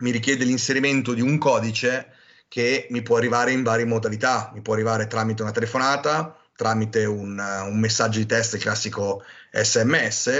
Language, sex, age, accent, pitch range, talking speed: Italian, male, 30-49, native, 115-140 Hz, 160 wpm